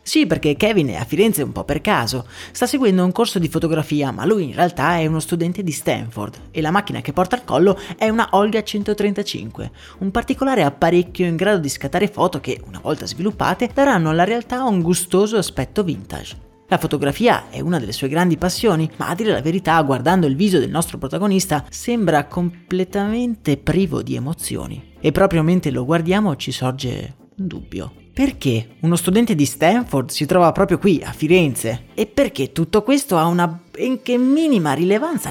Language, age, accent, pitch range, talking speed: Italian, 30-49, native, 145-200 Hz, 185 wpm